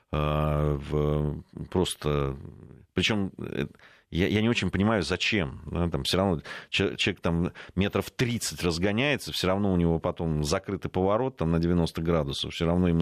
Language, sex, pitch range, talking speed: Russian, male, 75-95 Hz, 145 wpm